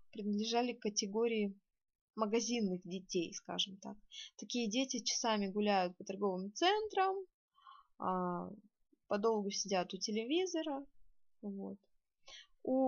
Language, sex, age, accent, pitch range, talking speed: Russian, female, 20-39, native, 200-260 Hz, 90 wpm